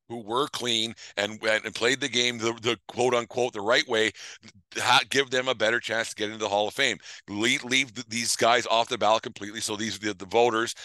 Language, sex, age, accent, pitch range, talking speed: English, male, 50-69, American, 110-125 Hz, 225 wpm